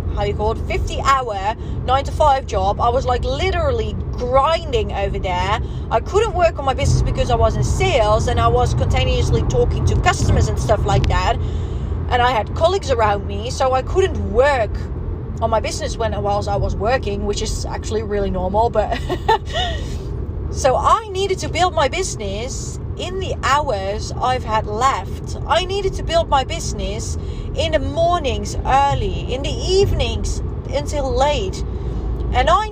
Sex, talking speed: female, 165 wpm